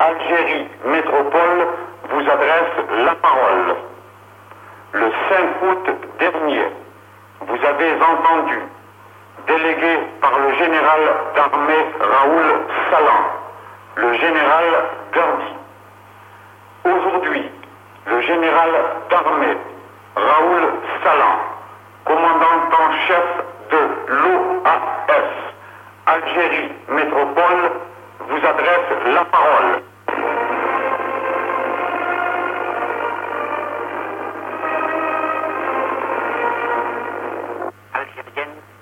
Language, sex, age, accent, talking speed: French, male, 70-89, French, 65 wpm